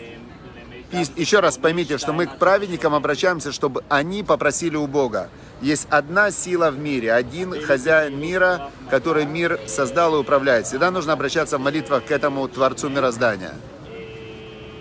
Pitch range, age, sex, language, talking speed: 140-175 Hz, 50-69, male, Russian, 140 wpm